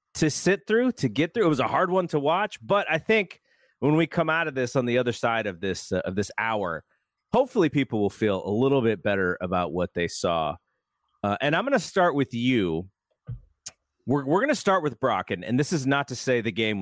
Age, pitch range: 30-49, 115-180 Hz